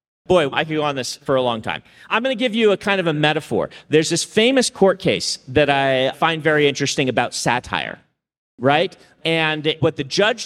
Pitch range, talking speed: 155-210 Hz, 210 wpm